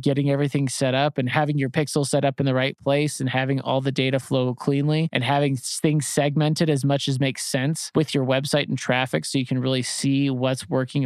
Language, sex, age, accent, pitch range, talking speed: English, male, 20-39, American, 135-155 Hz, 230 wpm